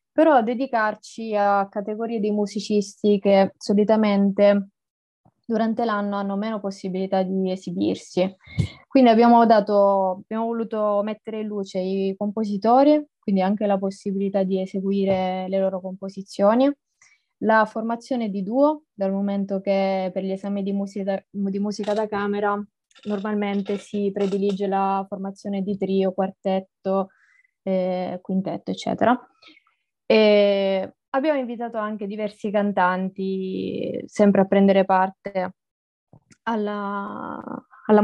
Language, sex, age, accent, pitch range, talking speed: Italian, female, 20-39, native, 195-220 Hz, 110 wpm